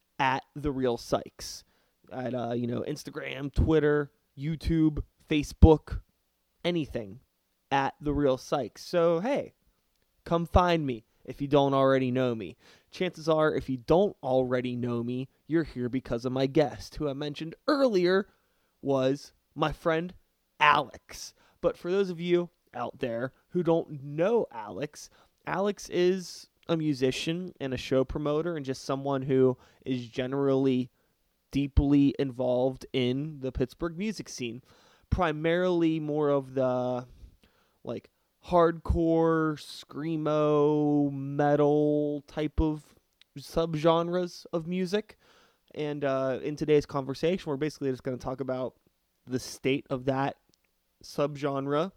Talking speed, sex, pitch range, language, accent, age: 130 wpm, male, 130-165 Hz, English, American, 20-39